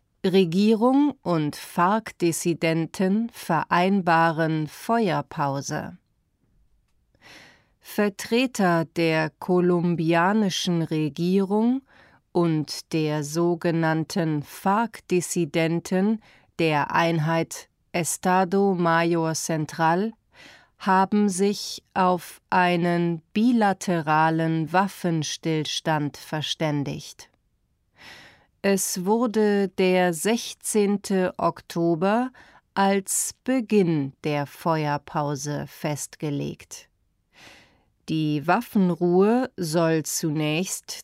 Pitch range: 160-195 Hz